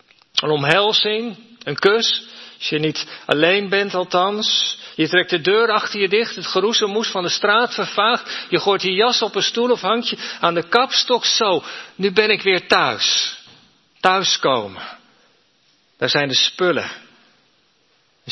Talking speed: 155 wpm